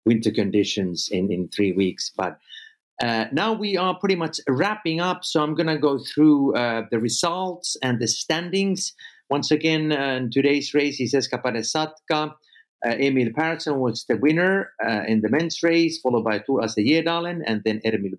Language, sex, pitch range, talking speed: English, male, 110-155 Hz, 175 wpm